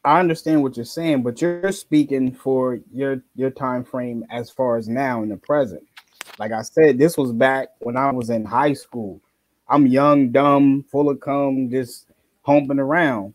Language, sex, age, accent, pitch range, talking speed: English, male, 20-39, American, 125-150 Hz, 185 wpm